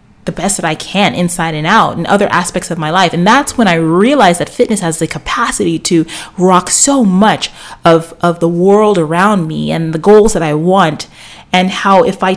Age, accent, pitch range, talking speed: 30-49, American, 160-195 Hz, 215 wpm